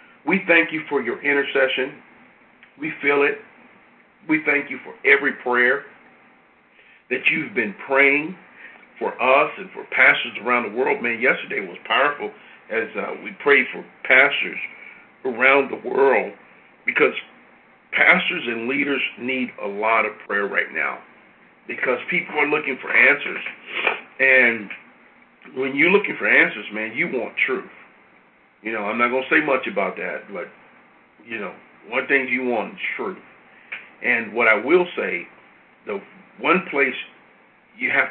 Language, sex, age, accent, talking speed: English, male, 50-69, American, 150 wpm